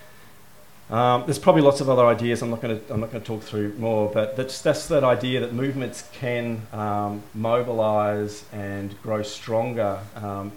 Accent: Australian